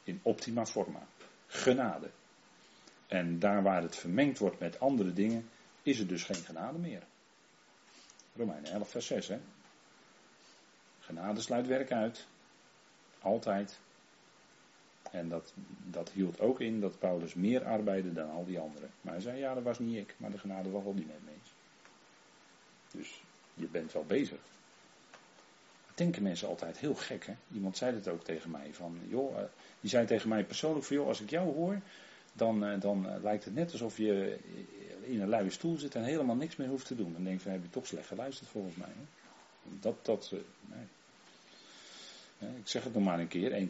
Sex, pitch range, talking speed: male, 90-120 Hz, 185 wpm